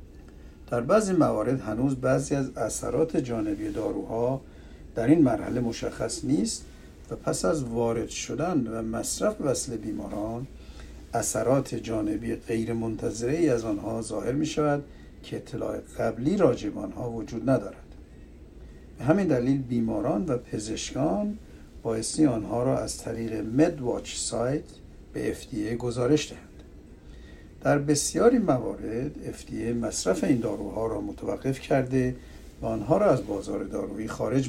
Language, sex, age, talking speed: Persian, male, 60-79, 125 wpm